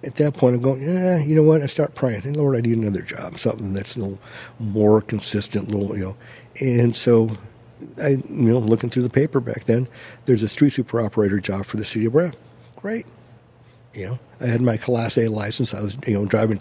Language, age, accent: English, 50-69, American